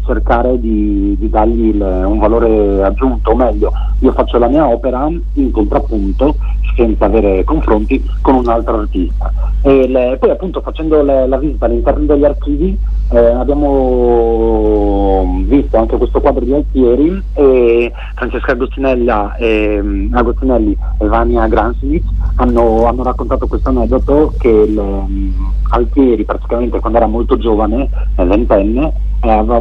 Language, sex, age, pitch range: Italian, male, 40-59, 105-135 Hz